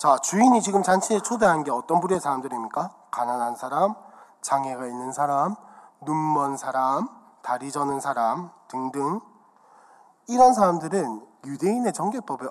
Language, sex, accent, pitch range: Korean, male, native, 150-220 Hz